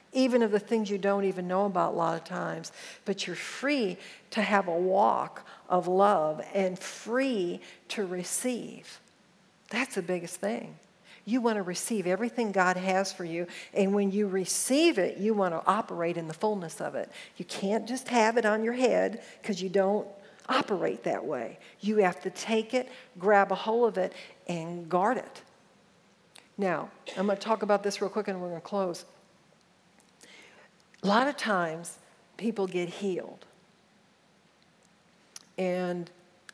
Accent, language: American, English